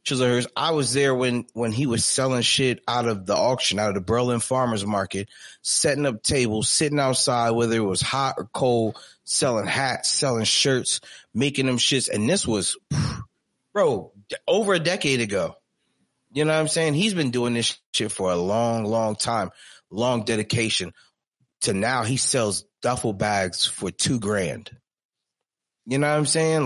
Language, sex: English, male